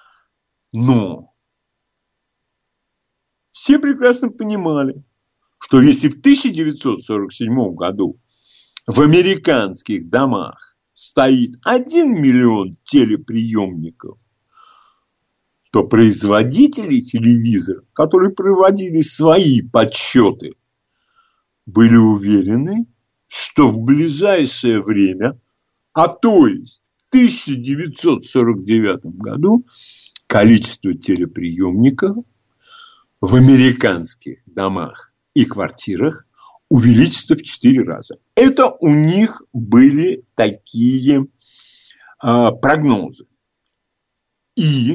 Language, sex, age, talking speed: Russian, male, 60-79, 70 wpm